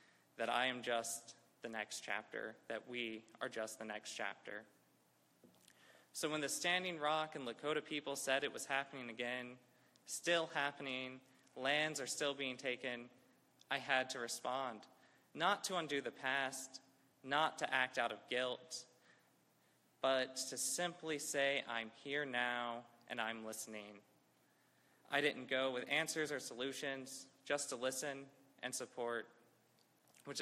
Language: English